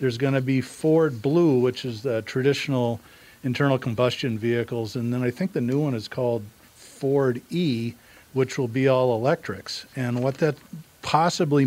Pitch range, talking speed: 115-135 Hz, 170 wpm